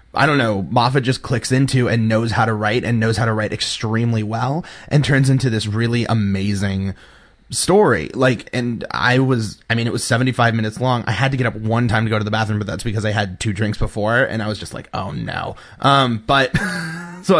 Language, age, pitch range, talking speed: English, 20-39, 110-135 Hz, 230 wpm